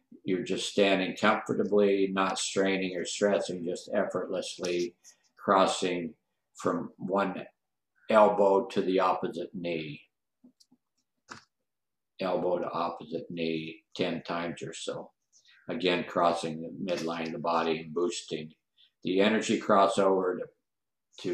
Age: 60-79